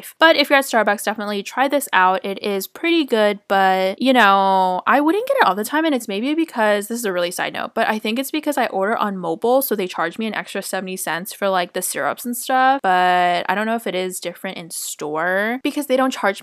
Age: 20-39